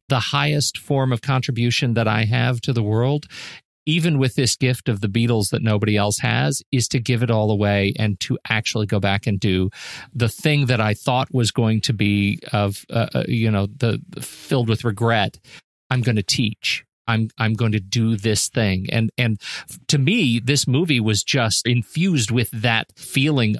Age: 40-59